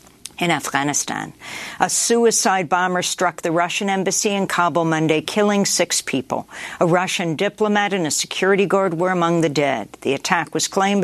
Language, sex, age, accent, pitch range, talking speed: English, female, 50-69, American, 170-215 Hz, 165 wpm